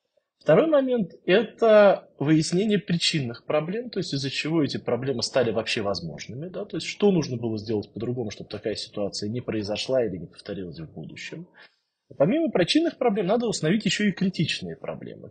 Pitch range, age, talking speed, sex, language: 120-175 Hz, 20-39, 175 wpm, male, Russian